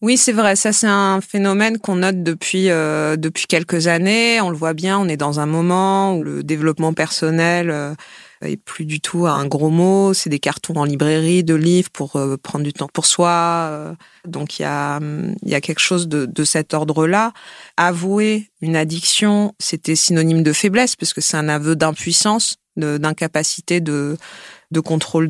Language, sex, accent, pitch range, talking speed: French, female, French, 160-195 Hz, 185 wpm